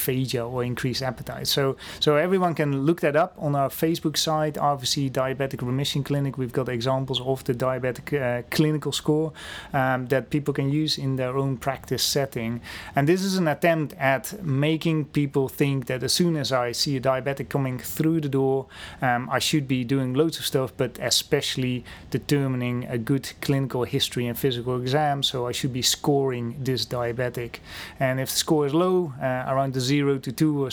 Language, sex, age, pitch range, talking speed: English, male, 30-49, 130-145 Hz, 190 wpm